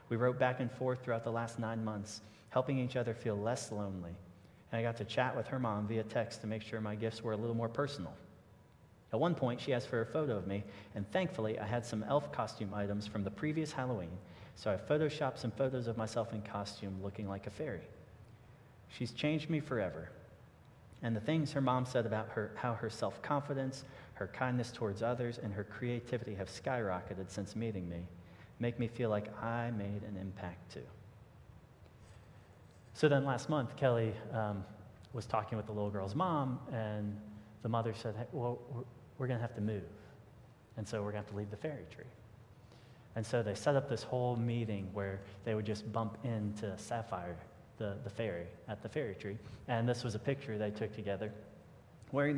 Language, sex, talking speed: English, male, 200 wpm